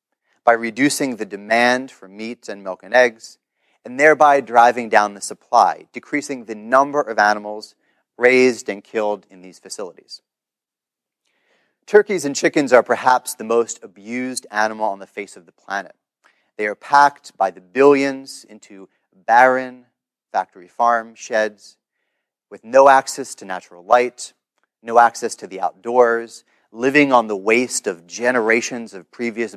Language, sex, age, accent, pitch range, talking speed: English, male, 30-49, American, 105-135 Hz, 145 wpm